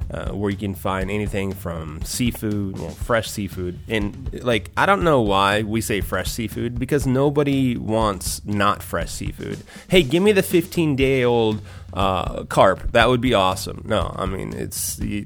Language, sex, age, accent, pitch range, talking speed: English, male, 30-49, American, 90-115 Hz, 155 wpm